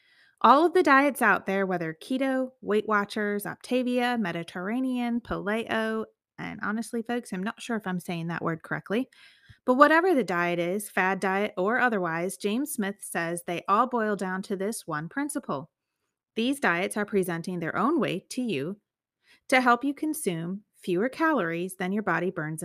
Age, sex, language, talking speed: 30-49, female, English, 170 wpm